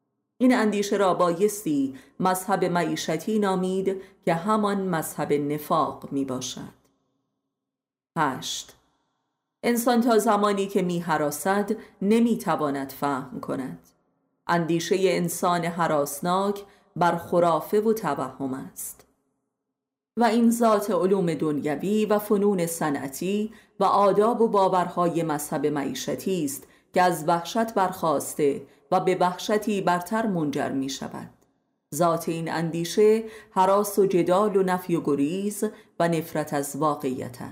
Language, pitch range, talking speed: Persian, 155-205 Hz, 115 wpm